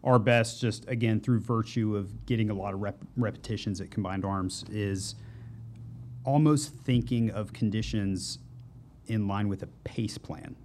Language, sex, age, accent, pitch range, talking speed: English, male, 30-49, American, 100-125 Hz, 145 wpm